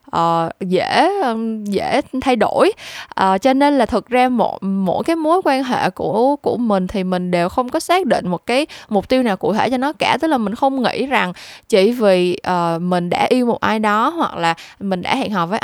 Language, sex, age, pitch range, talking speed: Vietnamese, female, 10-29, 185-260 Hz, 225 wpm